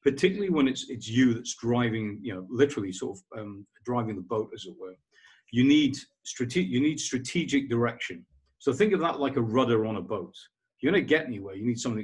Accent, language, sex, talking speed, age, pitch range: British, English, male, 225 wpm, 40-59, 105-135 Hz